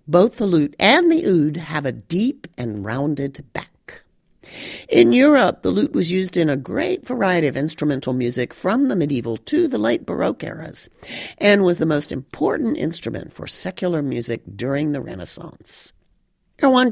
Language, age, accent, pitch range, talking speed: English, 50-69, American, 125-195 Hz, 165 wpm